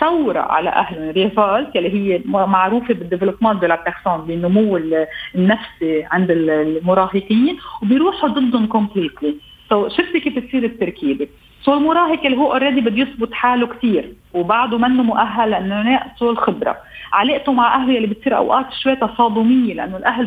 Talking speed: 150 wpm